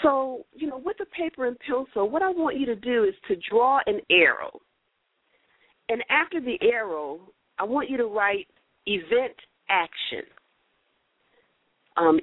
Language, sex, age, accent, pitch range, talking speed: English, female, 50-69, American, 195-325 Hz, 150 wpm